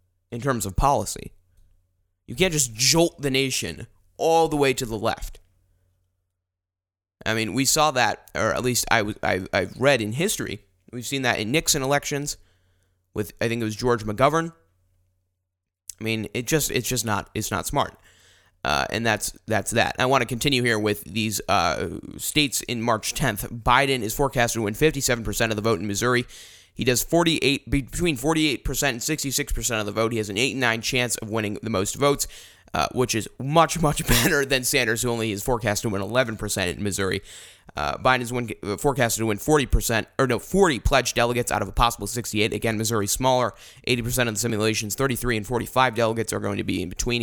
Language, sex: English, male